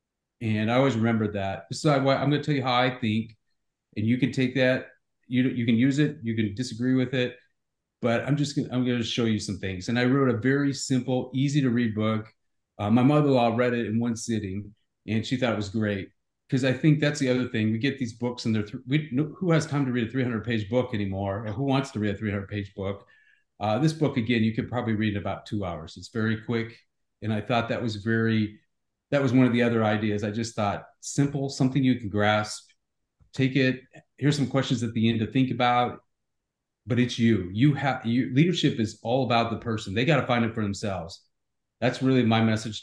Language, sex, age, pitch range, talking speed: English, male, 40-59, 110-130 Hz, 235 wpm